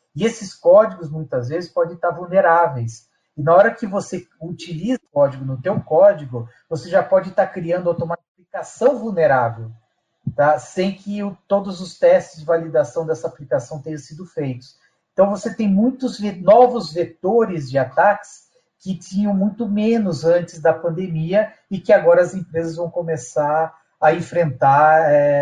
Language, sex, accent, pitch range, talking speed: Portuguese, male, Brazilian, 140-185 Hz, 150 wpm